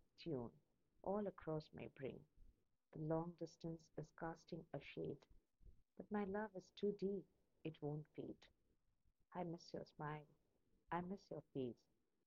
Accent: native